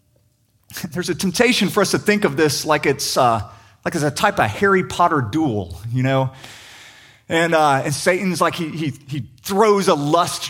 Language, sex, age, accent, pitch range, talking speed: English, male, 30-49, American, 125-200 Hz, 190 wpm